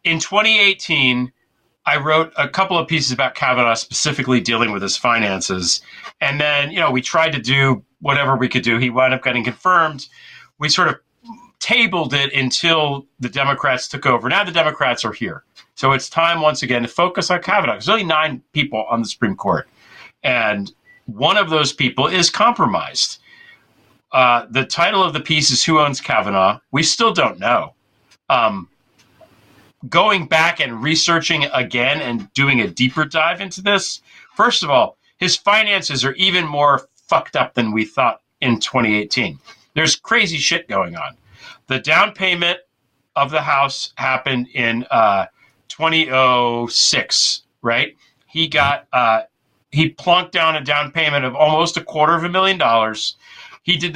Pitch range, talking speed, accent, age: 125-165 Hz, 165 wpm, American, 40-59